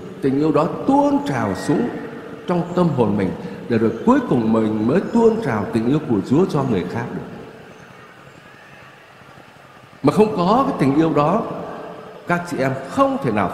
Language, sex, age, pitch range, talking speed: Vietnamese, male, 60-79, 140-205 Hz, 175 wpm